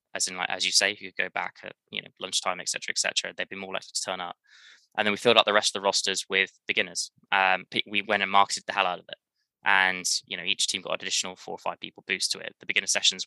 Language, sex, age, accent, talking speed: English, male, 20-39, British, 300 wpm